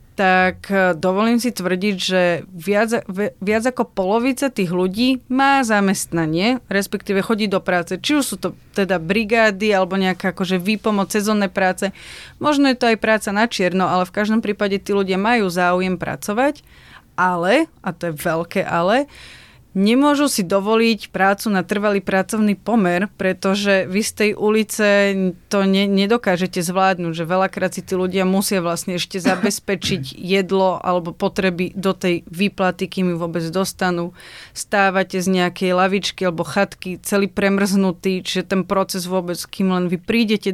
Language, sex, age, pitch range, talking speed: Slovak, female, 30-49, 180-205 Hz, 150 wpm